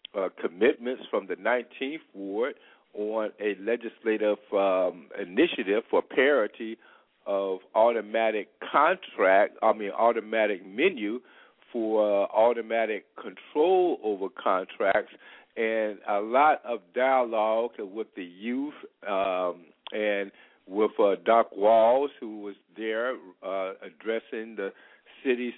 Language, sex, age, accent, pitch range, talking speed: English, male, 50-69, American, 105-130 Hz, 110 wpm